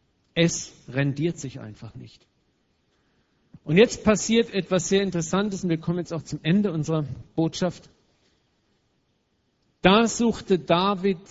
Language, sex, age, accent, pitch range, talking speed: German, male, 50-69, German, 145-190 Hz, 120 wpm